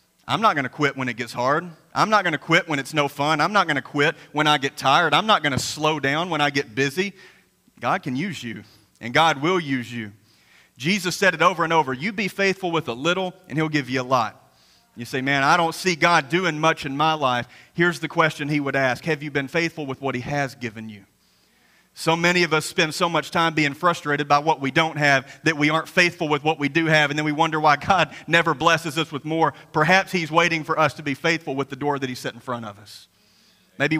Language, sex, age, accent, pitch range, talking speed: English, male, 40-59, American, 135-170 Hz, 260 wpm